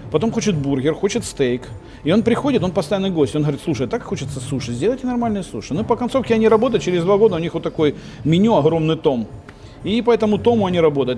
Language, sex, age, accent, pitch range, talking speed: Ukrainian, male, 40-59, native, 145-200 Hz, 220 wpm